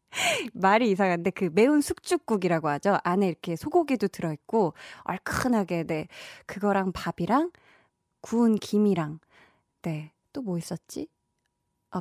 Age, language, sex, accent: 20-39, Korean, female, native